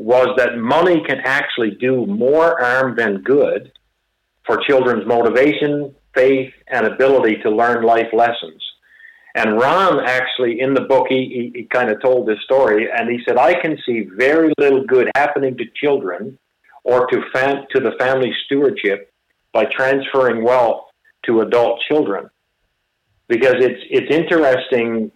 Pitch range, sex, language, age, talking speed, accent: 115-145 Hz, male, English, 50-69, 150 wpm, American